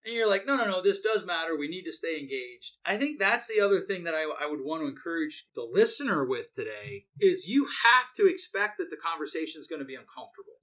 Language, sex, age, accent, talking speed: English, male, 30-49, American, 250 wpm